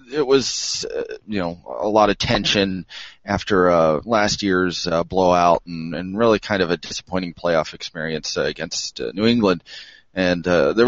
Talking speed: 175 wpm